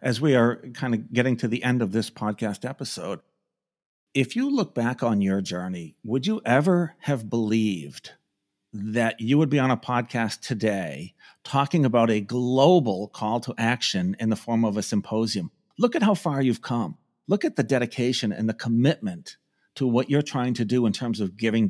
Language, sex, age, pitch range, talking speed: English, male, 50-69, 115-145 Hz, 190 wpm